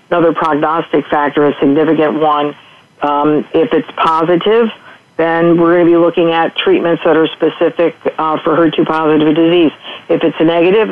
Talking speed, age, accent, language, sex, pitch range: 160 wpm, 50-69, American, English, female, 155-175 Hz